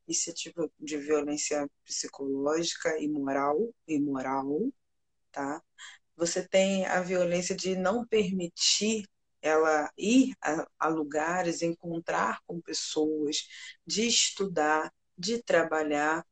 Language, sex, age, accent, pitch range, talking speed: Portuguese, female, 20-39, Brazilian, 155-190 Hz, 95 wpm